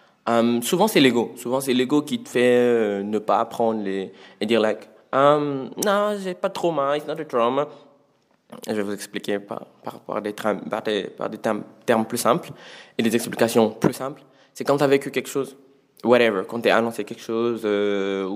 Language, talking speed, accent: French, 195 wpm, French